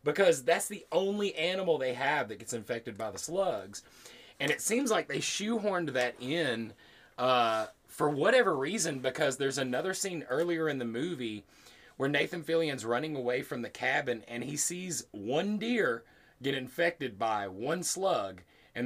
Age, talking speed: 30-49, 165 wpm